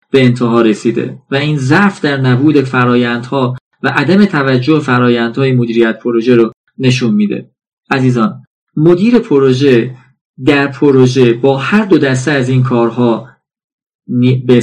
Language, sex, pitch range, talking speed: Persian, male, 125-155 Hz, 125 wpm